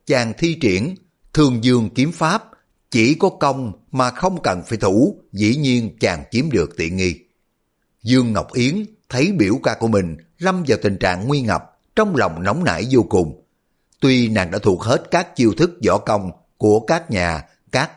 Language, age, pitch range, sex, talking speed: Vietnamese, 60-79, 100-140 Hz, male, 185 wpm